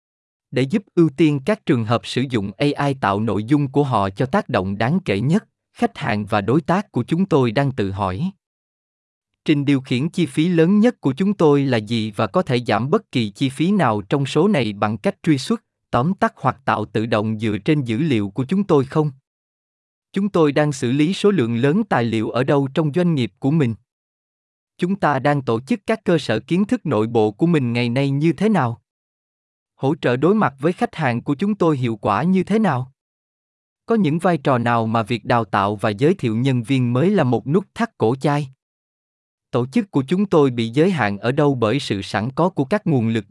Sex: male